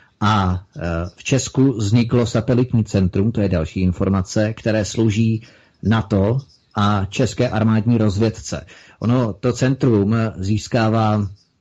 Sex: male